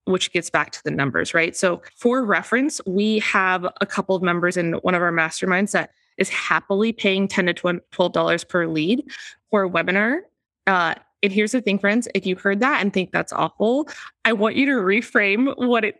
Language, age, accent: English, 20-39, American